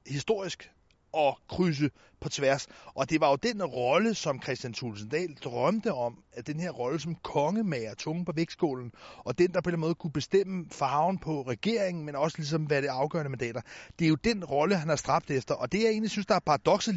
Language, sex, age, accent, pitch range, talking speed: Danish, male, 30-49, native, 135-185 Hz, 215 wpm